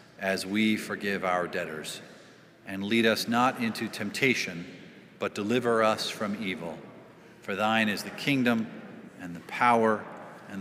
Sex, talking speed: male, 140 wpm